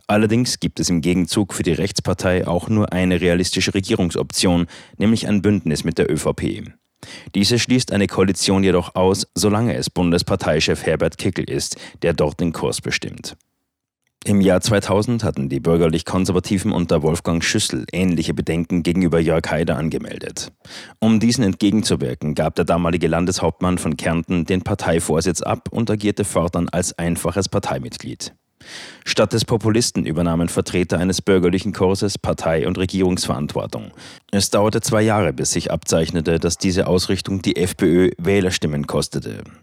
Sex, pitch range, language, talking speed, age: male, 85-105 Hz, German, 140 wpm, 30-49